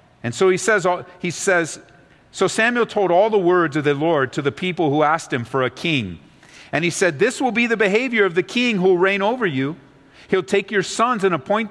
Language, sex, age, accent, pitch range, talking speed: English, male, 50-69, American, 160-210 Hz, 235 wpm